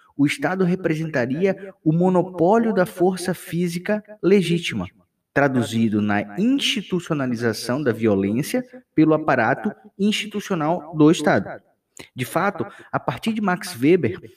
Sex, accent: male, Brazilian